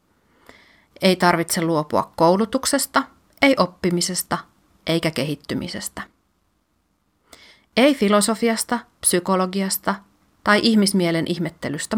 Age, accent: 30-49, native